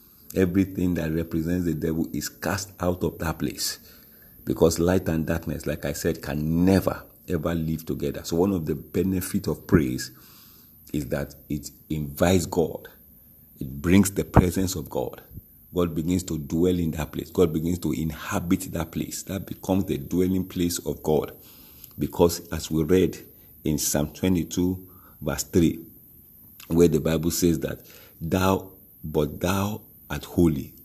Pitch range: 80-95 Hz